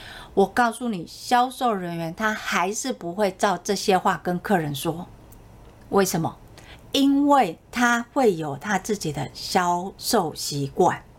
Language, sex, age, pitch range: Chinese, female, 50-69, 165-230 Hz